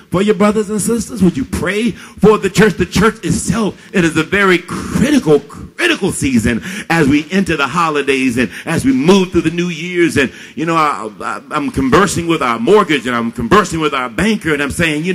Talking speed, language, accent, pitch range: 205 wpm, English, American, 150-195 Hz